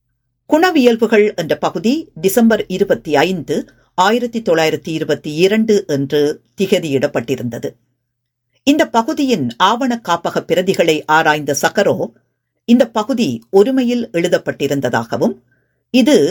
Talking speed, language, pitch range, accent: 90 wpm, Tamil, 150-225 Hz, native